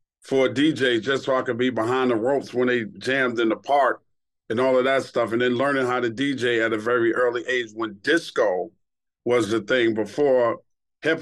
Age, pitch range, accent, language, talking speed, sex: 40-59, 115-135 Hz, American, English, 215 wpm, male